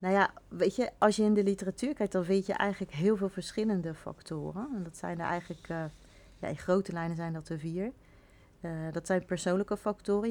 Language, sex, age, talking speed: Dutch, female, 40-59, 215 wpm